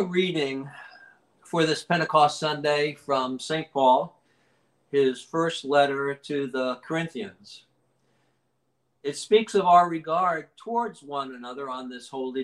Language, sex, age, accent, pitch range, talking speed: English, male, 60-79, American, 135-180 Hz, 120 wpm